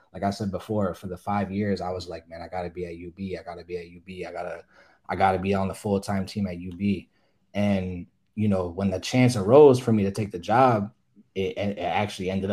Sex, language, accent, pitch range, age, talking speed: male, English, American, 95-115 Hz, 20-39, 255 wpm